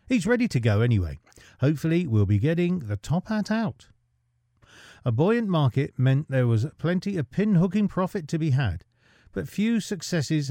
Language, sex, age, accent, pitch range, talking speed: English, male, 40-59, British, 115-180 Hz, 165 wpm